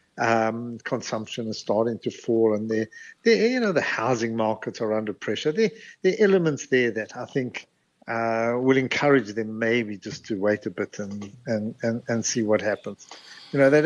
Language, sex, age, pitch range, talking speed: English, male, 60-79, 110-130 Hz, 185 wpm